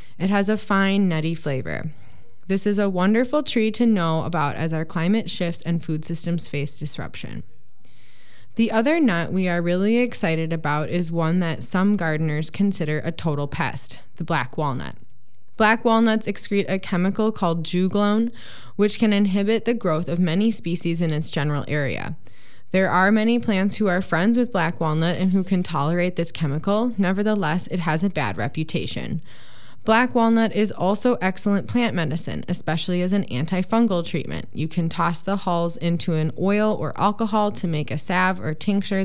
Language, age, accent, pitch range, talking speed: English, 20-39, American, 155-200 Hz, 170 wpm